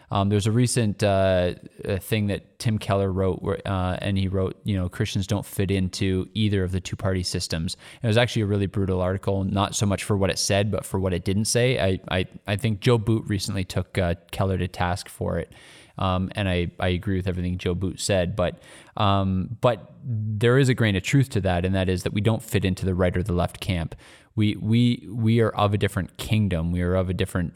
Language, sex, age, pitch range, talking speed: English, male, 20-39, 95-110 Hz, 235 wpm